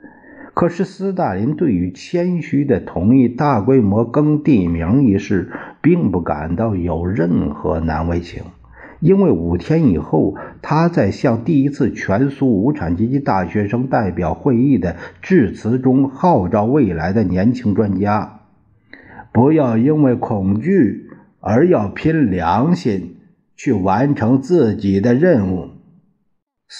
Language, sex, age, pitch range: Chinese, male, 50-69, 90-140 Hz